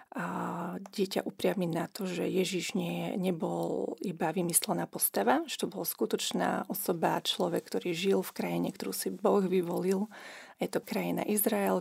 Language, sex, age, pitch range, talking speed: Slovak, female, 40-59, 170-200 Hz, 150 wpm